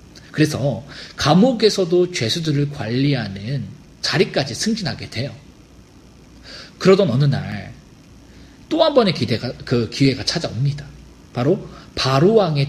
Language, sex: Korean, male